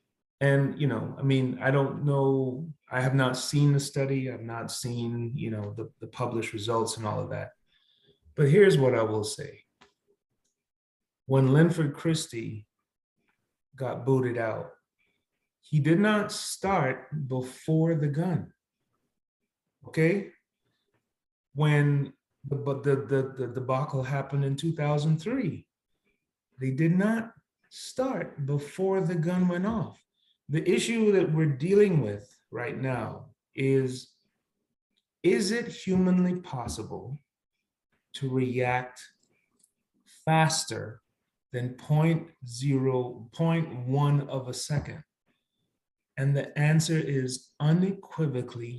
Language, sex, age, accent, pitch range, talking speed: English, male, 30-49, American, 130-165 Hz, 115 wpm